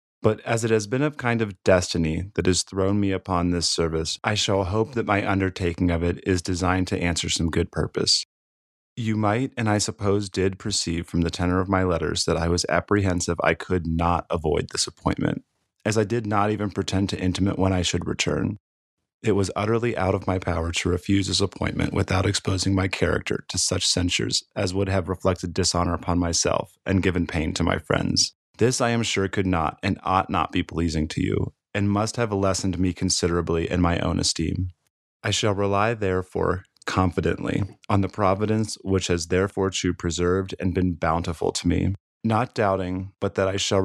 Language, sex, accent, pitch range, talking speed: English, male, American, 90-100 Hz, 195 wpm